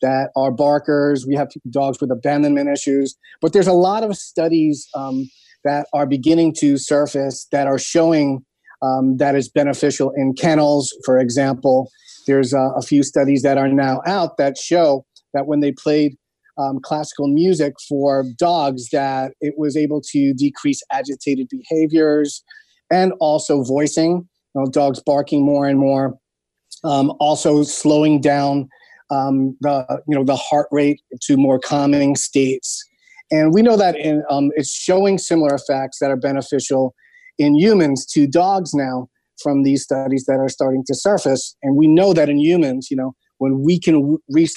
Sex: male